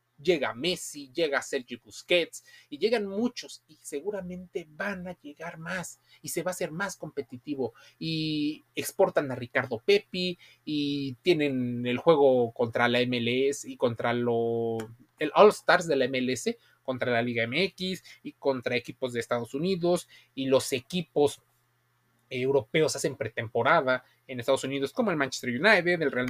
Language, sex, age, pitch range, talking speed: Spanish, male, 30-49, 125-160 Hz, 155 wpm